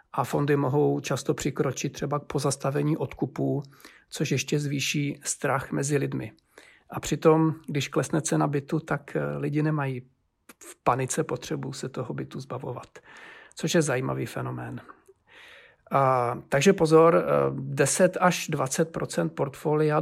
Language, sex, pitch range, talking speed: Czech, male, 135-155 Hz, 125 wpm